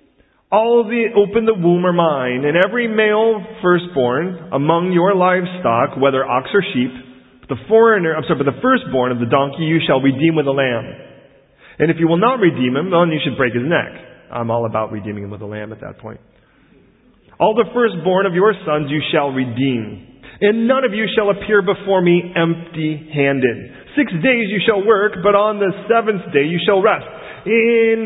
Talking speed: 195 wpm